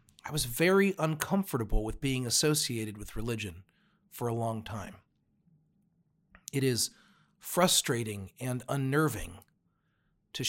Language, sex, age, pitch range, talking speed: English, male, 40-59, 115-150 Hz, 110 wpm